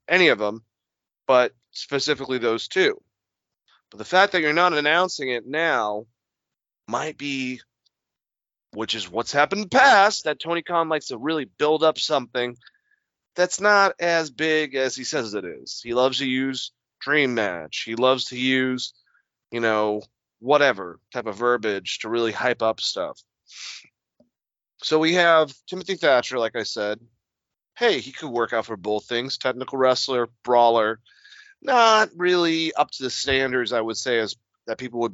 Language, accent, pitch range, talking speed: English, American, 120-155 Hz, 165 wpm